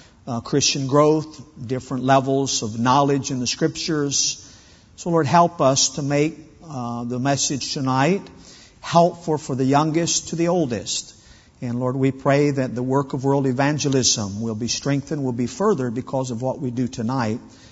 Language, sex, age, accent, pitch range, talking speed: English, male, 50-69, American, 125-155 Hz, 165 wpm